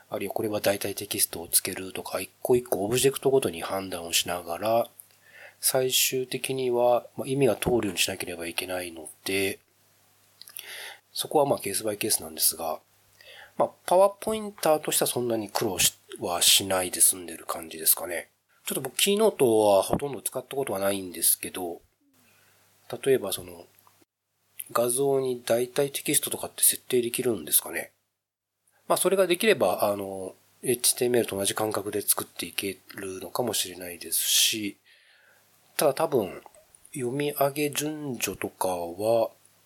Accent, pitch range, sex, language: native, 95-130 Hz, male, Japanese